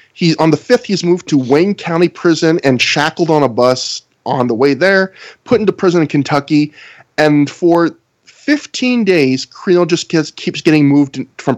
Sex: male